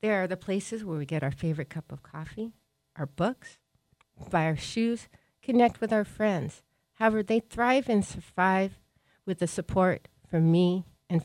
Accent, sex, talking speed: American, female, 170 wpm